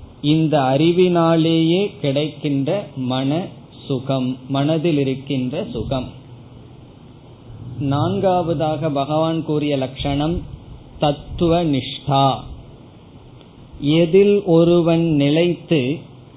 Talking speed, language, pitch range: 60 wpm, Tamil, 130-165 Hz